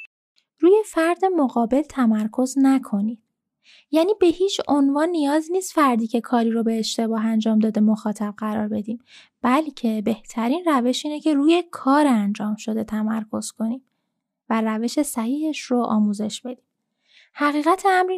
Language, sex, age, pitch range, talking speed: Persian, female, 10-29, 220-285 Hz, 135 wpm